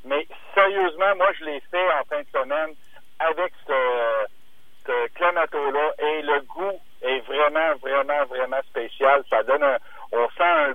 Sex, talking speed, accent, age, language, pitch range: male, 155 wpm, French, 60-79, French, 135-200 Hz